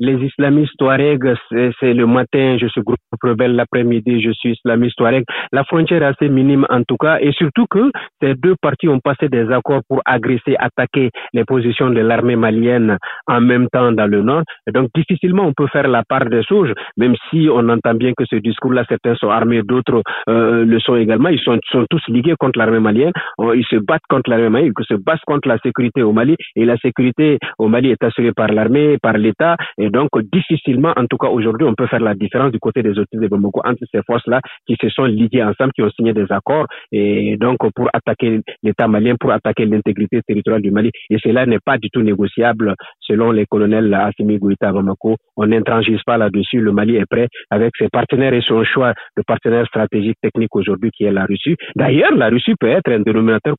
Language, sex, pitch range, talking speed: French, male, 110-135 Hz, 215 wpm